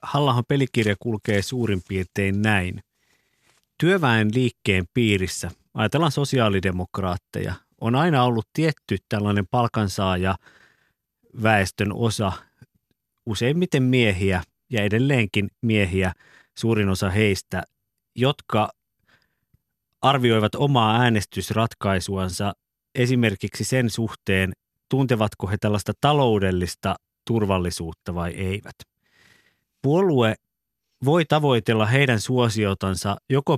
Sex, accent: male, native